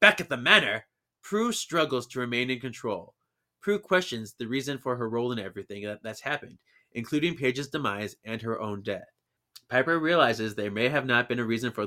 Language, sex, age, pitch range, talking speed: English, male, 30-49, 110-135 Hz, 190 wpm